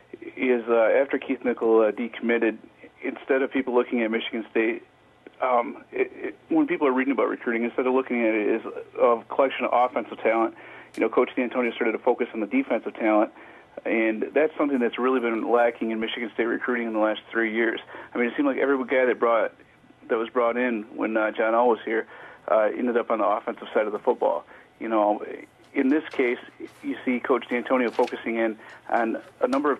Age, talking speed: 40-59, 210 wpm